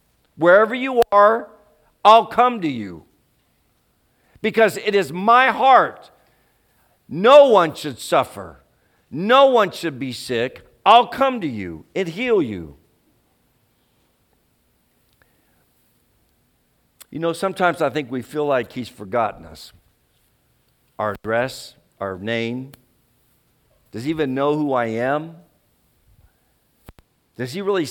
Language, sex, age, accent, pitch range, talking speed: English, male, 50-69, American, 115-170 Hz, 115 wpm